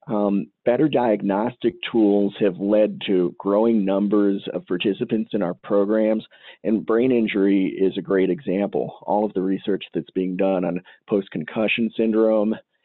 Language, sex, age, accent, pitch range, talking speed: English, male, 40-59, American, 95-110 Hz, 145 wpm